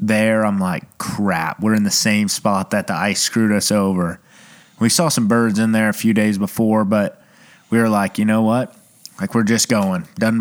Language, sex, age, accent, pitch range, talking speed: English, male, 30-49, American, 105-125 Hz, 215 wpm